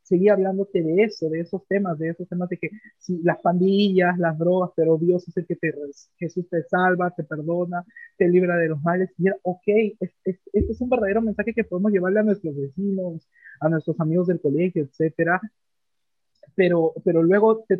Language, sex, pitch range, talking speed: Spanish, male, 180-245 Hz, 180 wpm